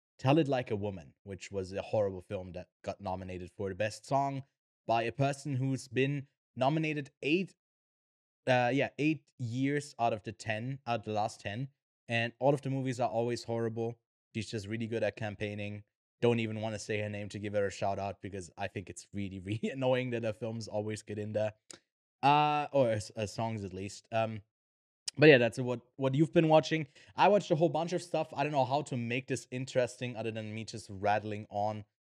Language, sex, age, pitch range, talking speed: English, male, 20-39, 105-130 Hz, 210 wpm